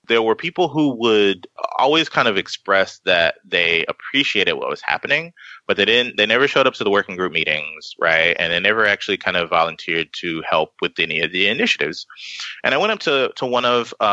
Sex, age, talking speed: male, 20-39, 215 wpm